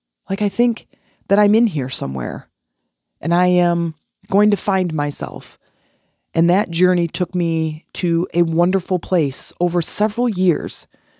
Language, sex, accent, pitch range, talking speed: English, female, American, 145-175 Hz, 145 wpm